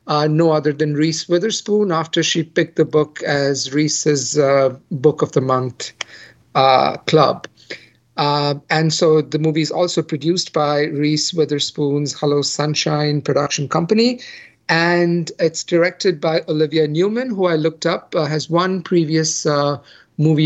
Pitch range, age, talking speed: 150-175 Hz, 50-69, 145 wpm